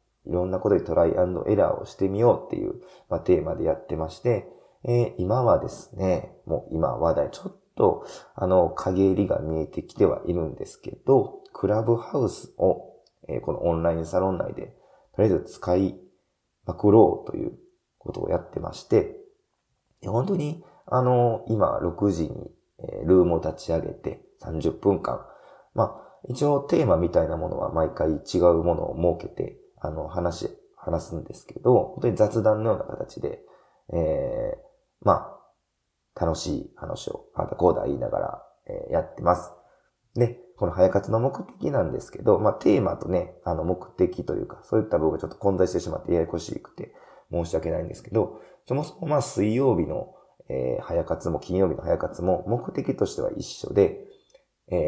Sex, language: male, Japanese